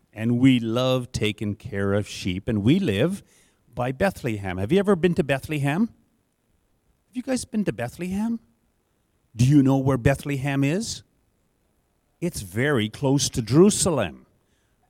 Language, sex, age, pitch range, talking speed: English, male, 50-69, 115-170 Hz, 140 wpm